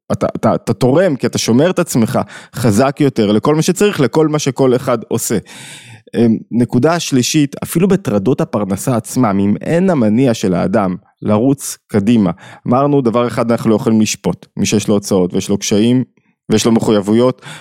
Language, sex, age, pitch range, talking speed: Hebrew, male, 20-39, 105-135 Hz, 165 wpm